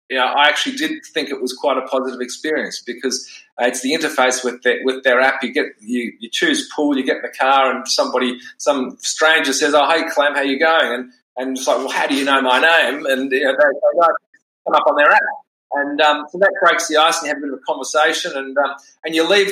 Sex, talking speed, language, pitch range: male, 260 wpm, English, 130-160 Hz